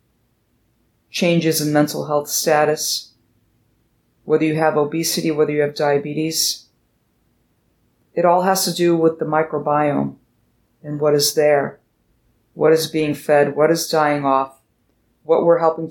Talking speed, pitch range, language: 135 wpm, 150-195 Hz, English